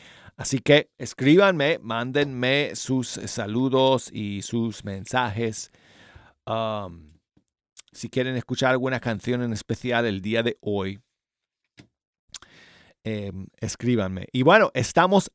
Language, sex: Spanish, male